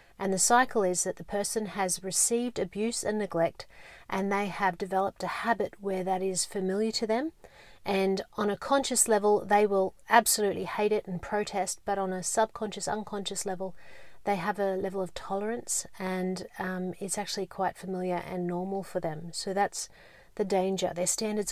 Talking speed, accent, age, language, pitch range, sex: 180 wpm, Australian, 30-49, English, 180-205 Hz, female